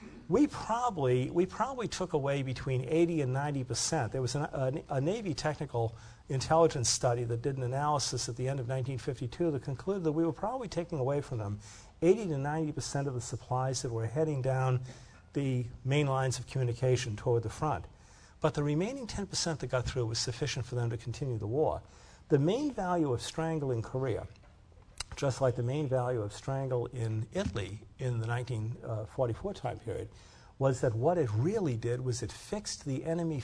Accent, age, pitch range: American, 50-69, 120-155 Hz